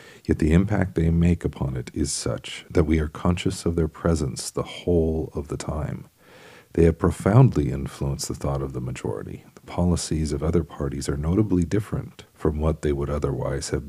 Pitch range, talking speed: 70-85 Hz, 190 wpm